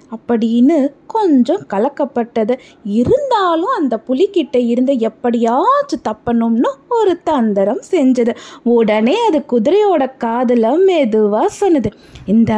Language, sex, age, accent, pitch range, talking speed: Tamil, female, 20-39, native, 220-310 Hz, 90 wpm